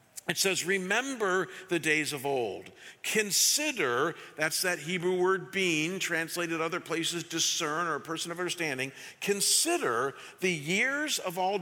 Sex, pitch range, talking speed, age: male, 180-225 Hz, 140 wpm, 50-69